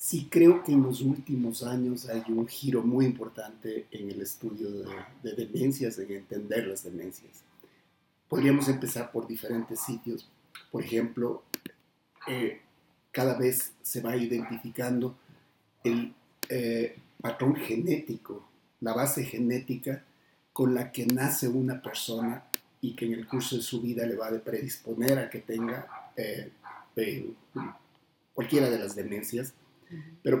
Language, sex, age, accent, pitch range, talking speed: Spanish, male, 50-69, Mexican, 115-130 Hz, 140 wpm